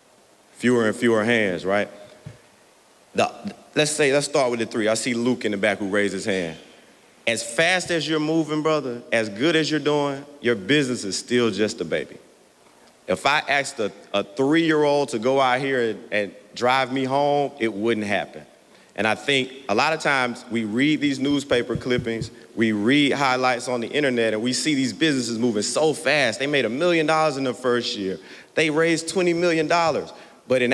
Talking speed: 195 wpm